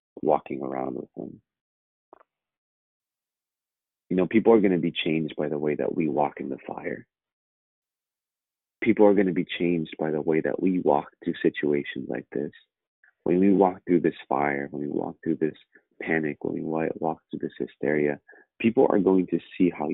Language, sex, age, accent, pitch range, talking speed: English, male, 30-49, American, 75-90 Hz, 185 wpm